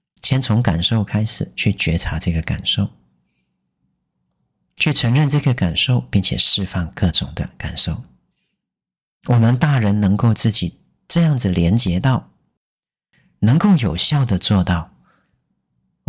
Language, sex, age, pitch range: Chinese, male, 40-59, 85-115 Hz